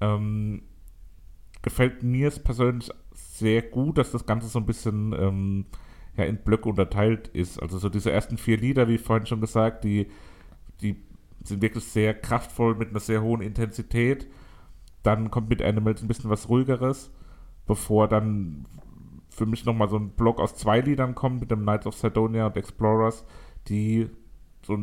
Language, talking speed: German, 165 wpm